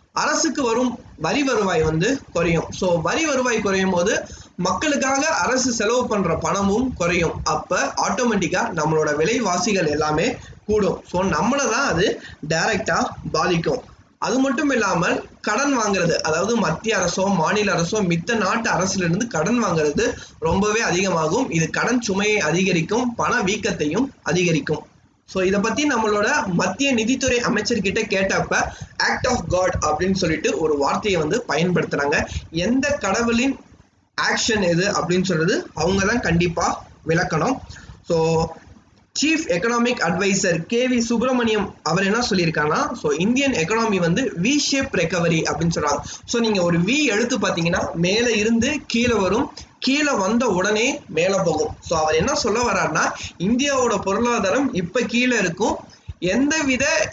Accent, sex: native, male